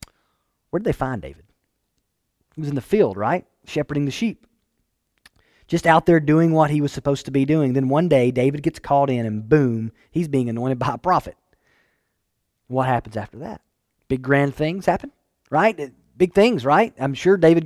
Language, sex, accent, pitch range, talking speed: English, male, American, 135-195 Hz, 185 wpm